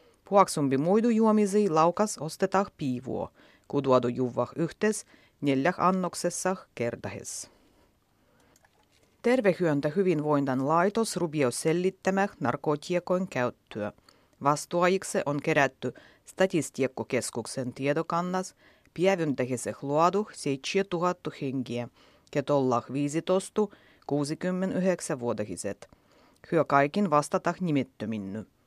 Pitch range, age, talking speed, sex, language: 130-185 Hz, 30-49, 75 wpm, female, Finnish